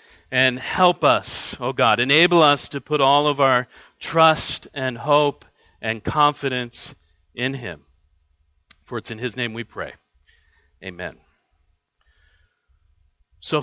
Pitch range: 120-155 Hz